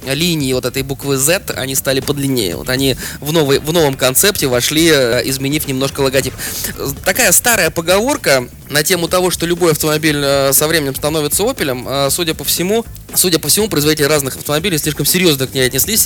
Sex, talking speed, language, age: male, 170 wpm, Russian, 20-39